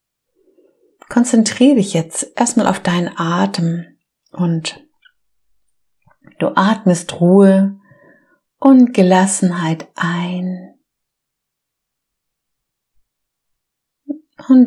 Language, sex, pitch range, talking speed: German, female, 175-225 Hz, 60 wpm